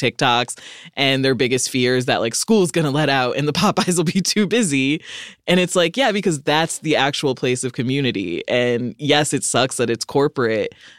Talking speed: 195 wpm